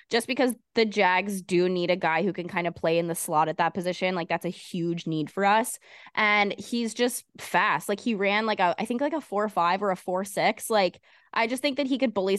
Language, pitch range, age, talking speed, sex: English, 180-215 Hz, 20-39, 260 wpm, female